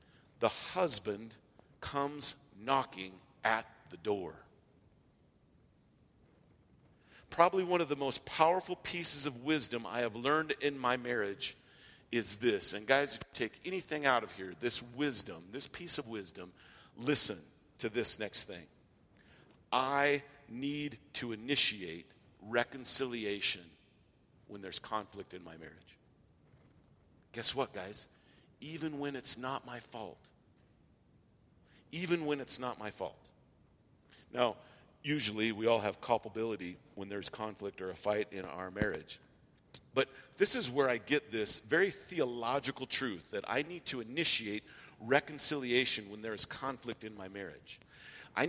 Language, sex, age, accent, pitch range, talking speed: English, male, 50-69, American, 110-145 Hz, 135 wpm